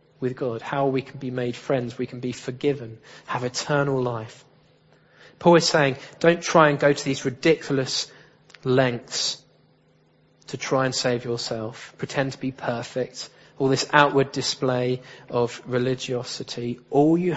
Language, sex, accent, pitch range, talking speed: English, male, British, 125-150 Hz, 150 wpm